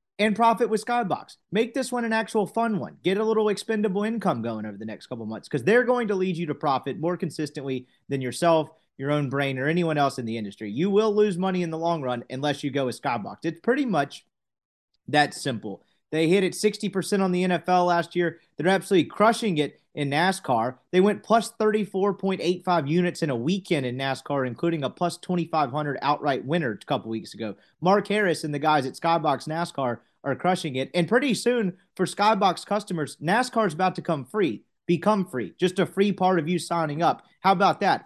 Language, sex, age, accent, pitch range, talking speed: English, male, 30-49, American, 145-190 Hz, 210 wpm